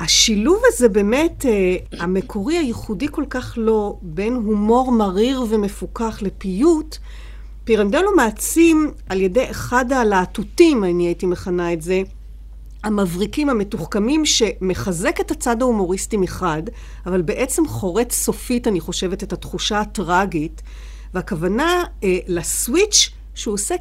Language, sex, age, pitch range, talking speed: Hebrew, female, 50-69, 190-260 Hz, 115 wpm